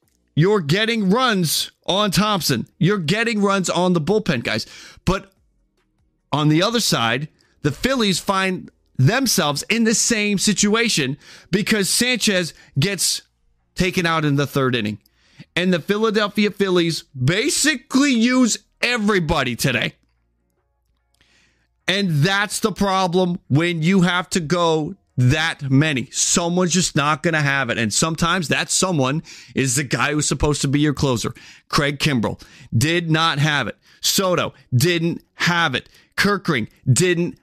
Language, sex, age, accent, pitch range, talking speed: English, male, 30-49, American, 150-215 Hz, 135 wpm